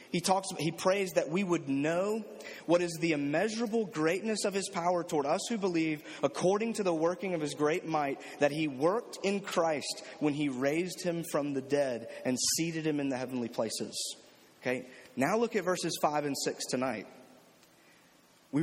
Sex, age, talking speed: male, 30-49, 185 wpm